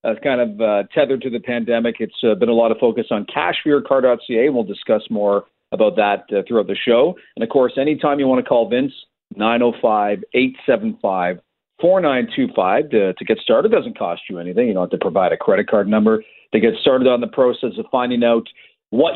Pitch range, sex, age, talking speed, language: 115-150 Hz, male, 40-59, 205 wpm, English